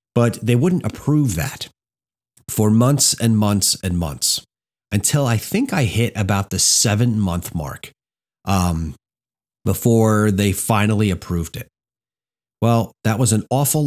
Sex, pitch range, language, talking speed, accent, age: male, 95-120 Hz, English, 140 wpm, American, 30-49